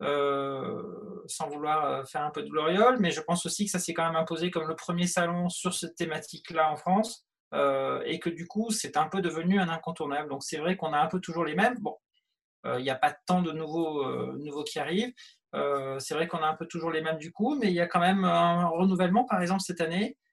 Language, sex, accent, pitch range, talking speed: French, male, French, 155-190 Hz, 250 wpm